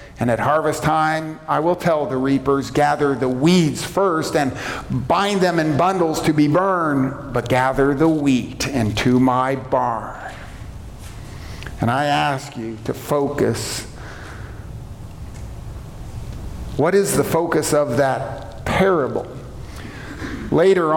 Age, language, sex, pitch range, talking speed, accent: 50-69, English, male, 130-165 Hz, 120 wpm, American